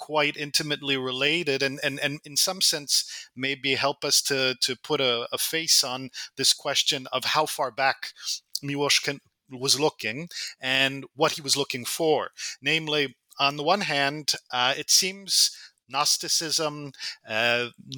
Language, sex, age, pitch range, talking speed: English, male, 40-59, 130-160 Hz, 145 wpm